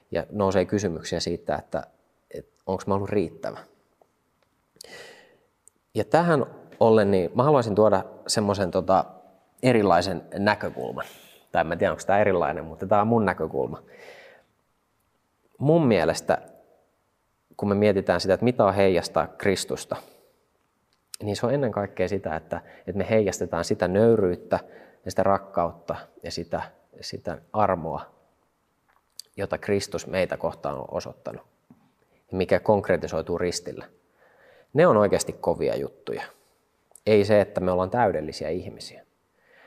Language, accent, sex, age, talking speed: Finnish, native, male, 30-49, 125 wpm